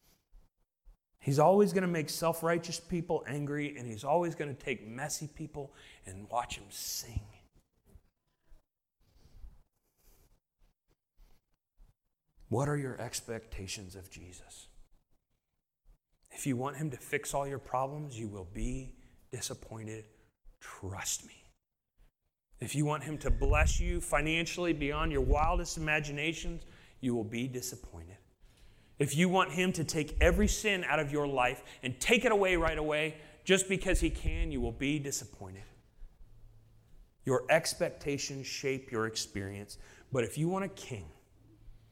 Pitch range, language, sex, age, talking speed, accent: 110-160 Hz, English, male, 30-49, 135 wpm, American